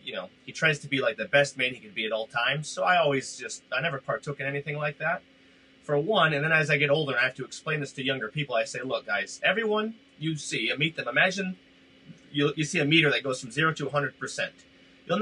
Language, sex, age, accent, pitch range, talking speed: English, male, 30-49, American, 140-165 Hz, 275 wpm